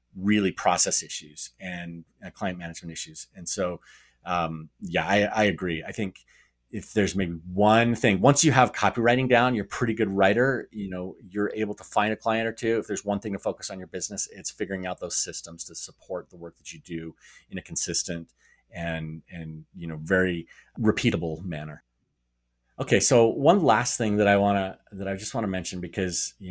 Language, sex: English, male